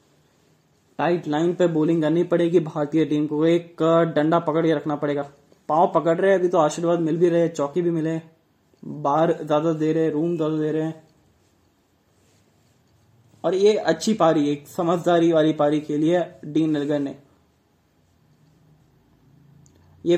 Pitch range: 145-175 Hz